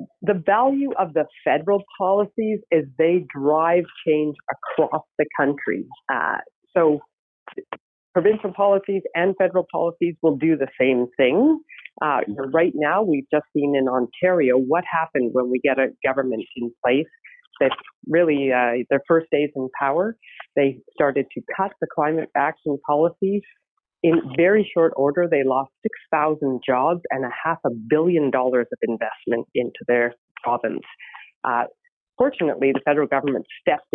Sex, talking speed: female, 145 wpm